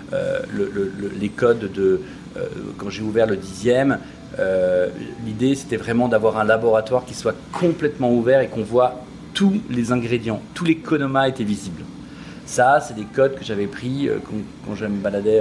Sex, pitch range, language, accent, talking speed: male, 110-145 Hz, French, French, 185 wpm